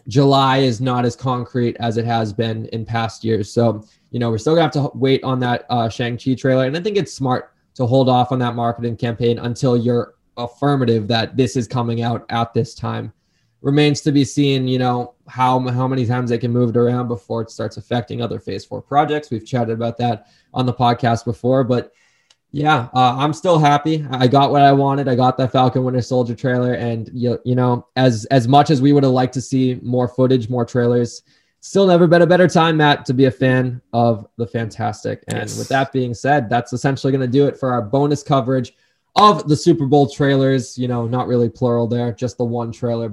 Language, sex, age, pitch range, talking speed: English, male, 20-39, 120-140 Hz, 220 wpm